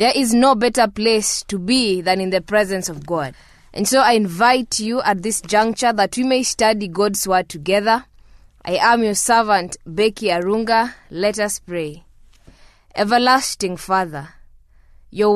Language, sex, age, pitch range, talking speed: English, female, 20-39, 180-240 Hz, 155 wpm